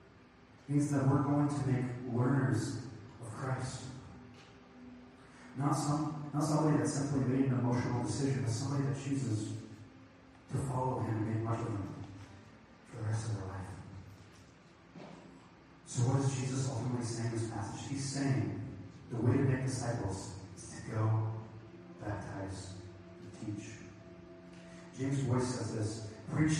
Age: 30-49